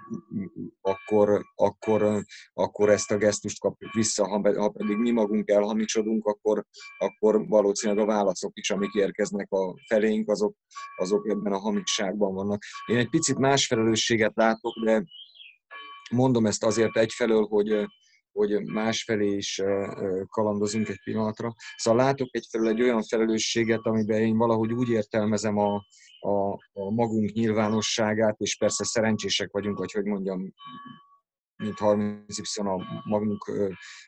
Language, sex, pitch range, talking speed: Hungarian, male, 105-115 Hz, 130 wpm